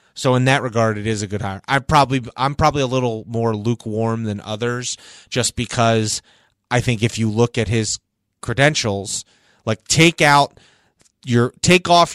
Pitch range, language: 110-130 Hz, English